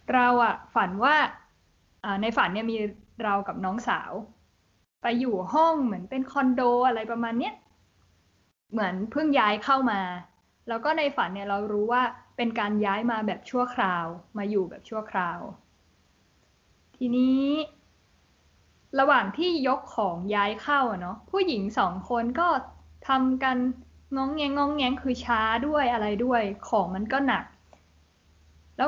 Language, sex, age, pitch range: Thai, female, 20-39, 210-275 Hz